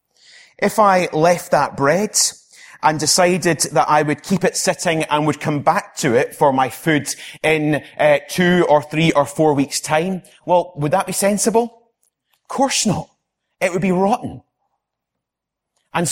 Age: 30-49